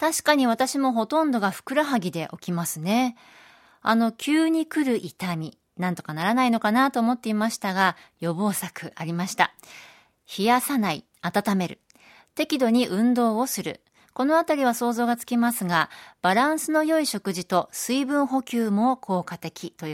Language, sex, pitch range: Japanese, female, 180-255 Hz